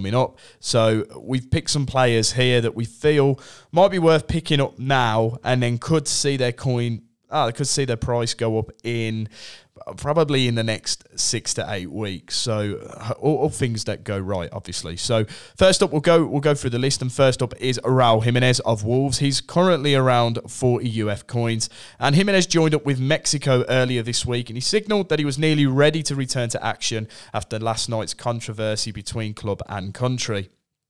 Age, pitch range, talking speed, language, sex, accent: 20-39, 110-140 Hz, 195 wpm, English, male, British